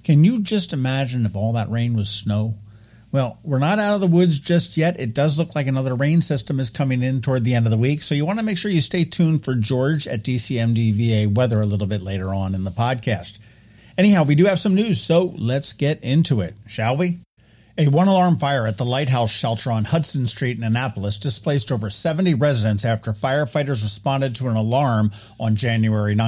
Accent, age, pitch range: American, 50-69, 115-150 Hz